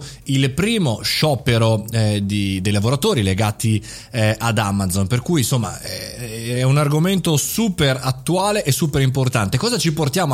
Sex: male